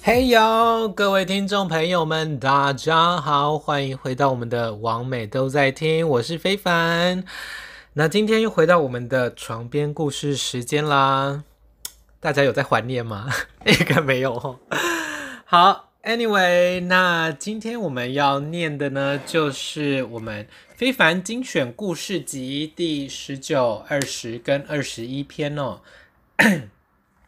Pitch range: 125-170 Hz